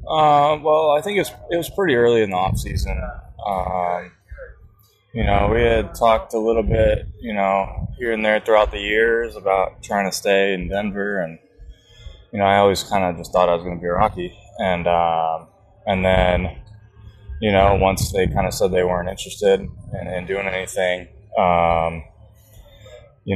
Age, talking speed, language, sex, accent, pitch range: 20-39, 185 wpm, English, male, American, 85-110 Hz